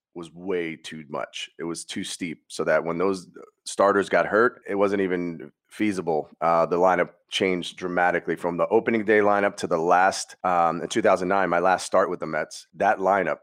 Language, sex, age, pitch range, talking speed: English, male, 30-49, 85-100 Hz, 190 wpm